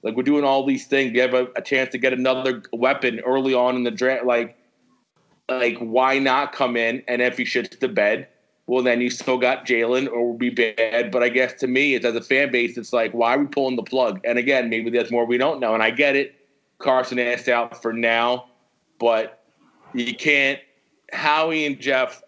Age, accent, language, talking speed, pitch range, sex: 30-49, American, English, 225 wpm, 120-135 Hz, male